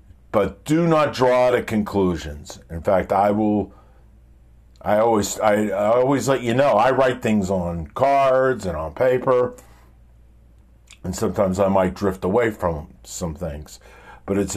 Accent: American